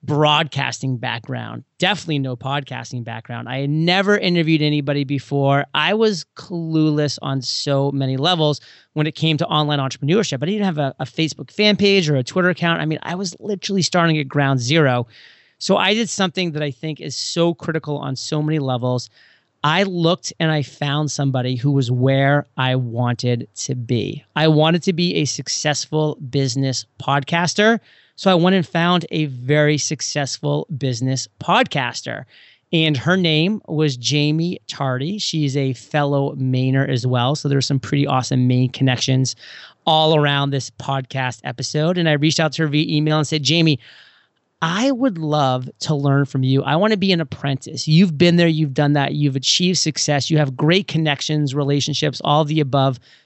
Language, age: English, 30-49